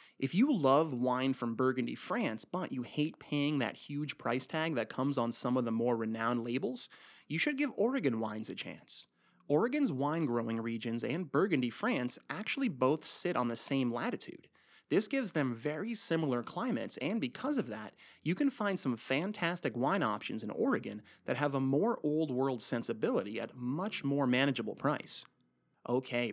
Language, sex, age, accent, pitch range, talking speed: English, male, 30-49, American, 125-170 Hz, 170 wpm